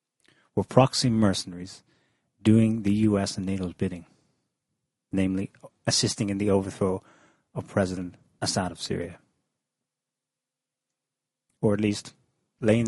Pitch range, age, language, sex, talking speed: 100-130 Hz, 30-49, English, male, 105 wpm